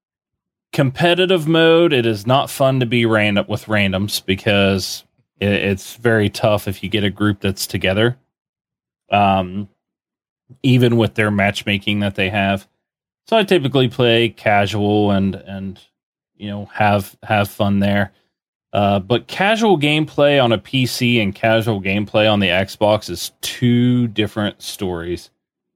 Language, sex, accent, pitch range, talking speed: English, male, American, 100-120 Hz, 140 wpm